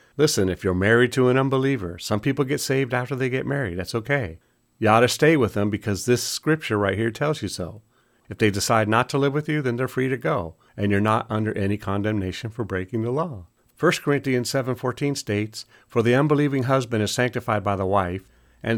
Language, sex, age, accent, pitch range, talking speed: English, male, 50-69, American, 100-130 Hz, 215 wpm